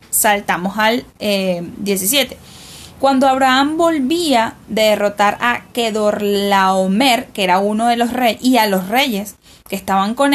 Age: 10-29